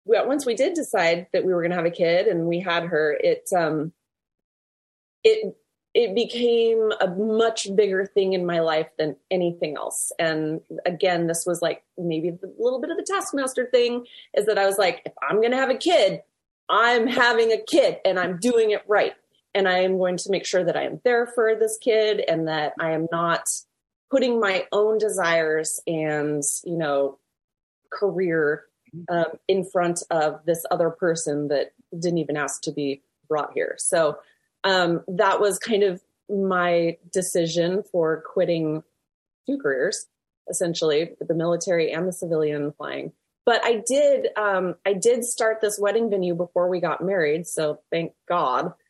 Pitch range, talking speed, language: 170-225 Hz, 175 wpm, English